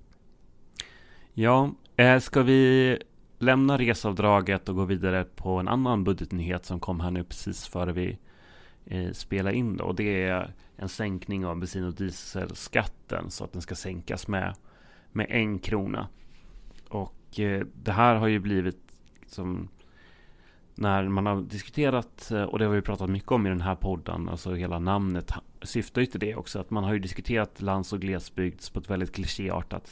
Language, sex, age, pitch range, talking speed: Swedish, male, 30-49, 90-105 Hz, 165 wpm